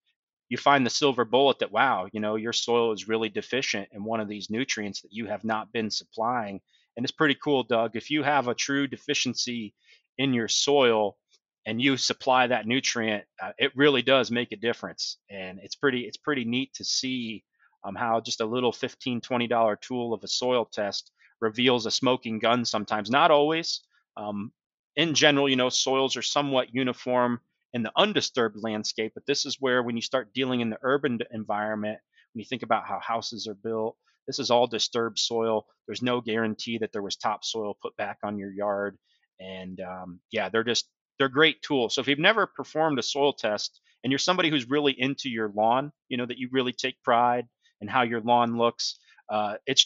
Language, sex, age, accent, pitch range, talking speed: English, male, 30-49, American, 110-135 Hz, 200 wpm